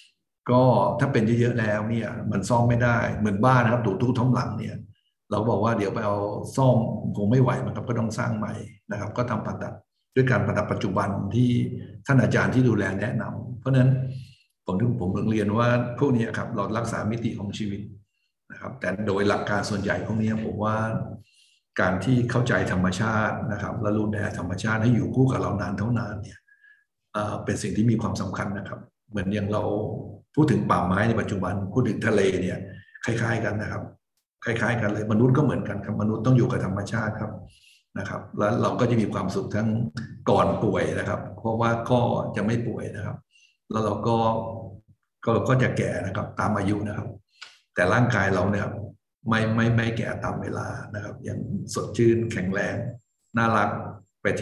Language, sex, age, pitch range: Thai, male, 60-79, 105-120 Hz